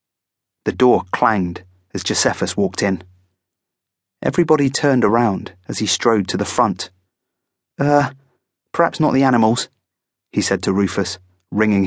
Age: 30-49